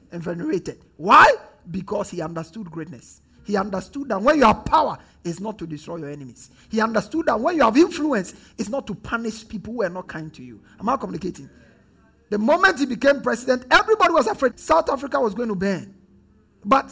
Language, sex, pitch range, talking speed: English, male, 200-280 Hz, 200 wpm